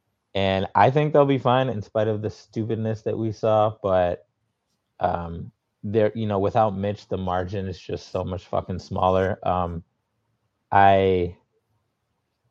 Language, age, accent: English, 30-49, American